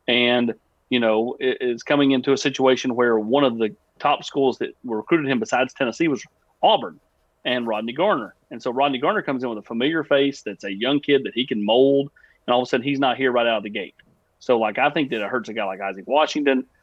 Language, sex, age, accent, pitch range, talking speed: English, male, 30-49, American, 110-135 Hz, 245 wpm